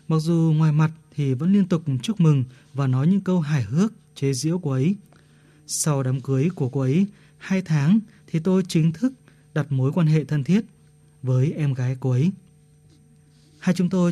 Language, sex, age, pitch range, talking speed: Vietnamese, male, 20-39, 145-175 Hz, 195 wpm